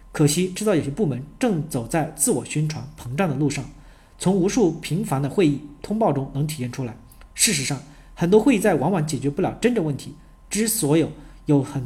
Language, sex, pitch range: Chinese, male, 140-185 Hz